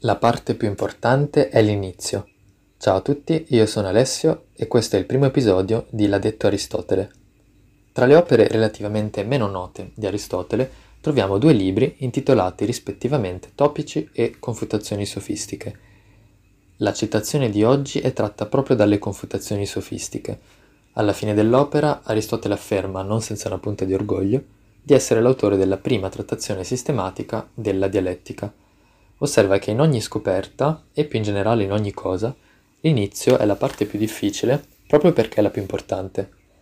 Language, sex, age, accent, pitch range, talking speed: Italian, male, 20-39, native, 100-130 Hz, 150 wpm